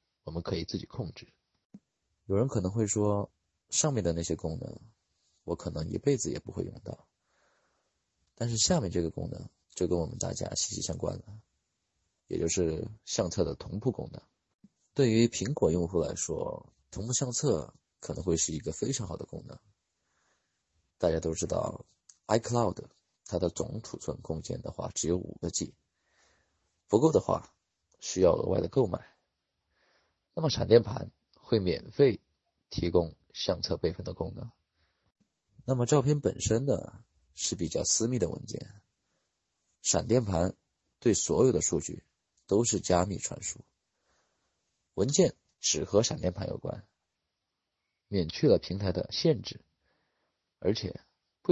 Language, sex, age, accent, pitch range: Chinese, male, 20-39, native, 85-120 Hz